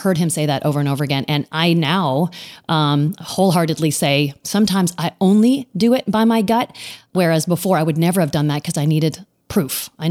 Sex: female